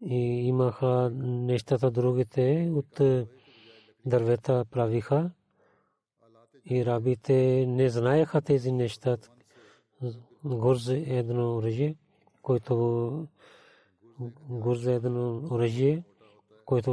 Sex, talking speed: male, 60 wpm